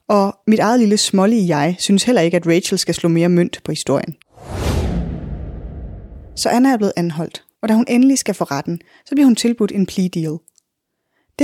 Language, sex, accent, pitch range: Danish, female, native, 170-225 Hz